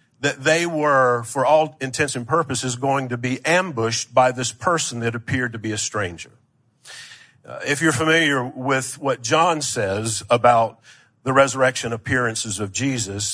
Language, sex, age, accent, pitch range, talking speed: English, male, 50-69, American, 120-150 Hz, 155 wpm